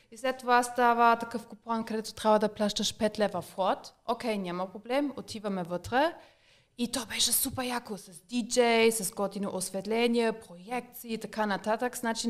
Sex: female